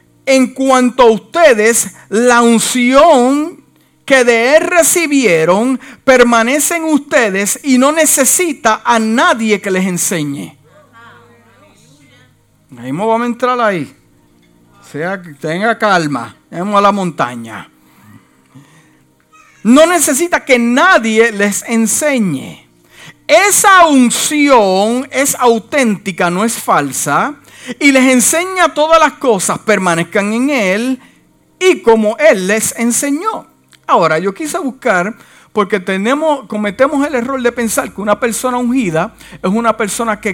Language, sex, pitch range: Spanish, male, 185-270 Hz